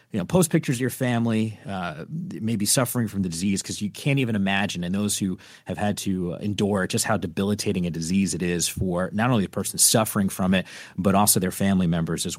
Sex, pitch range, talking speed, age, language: male, 95-115 Hz, 225 wpm, 30-49, English